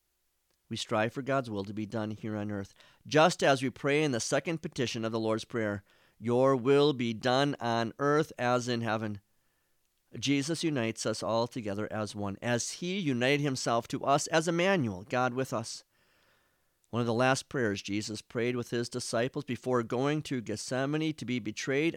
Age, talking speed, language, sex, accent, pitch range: 40-59, 185 wpm, English, male, American, 110-145 Hz